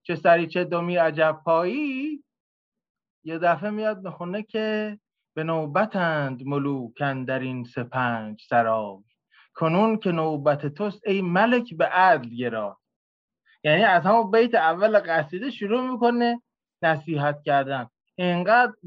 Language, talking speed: Persian, 115 wpm